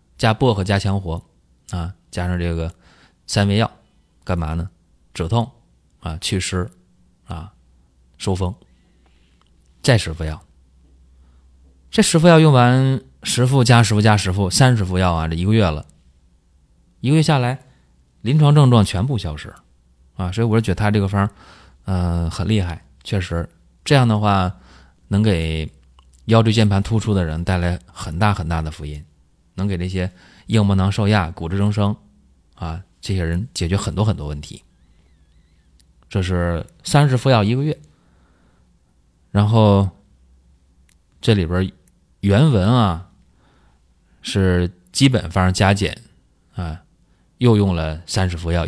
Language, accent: Chinese, native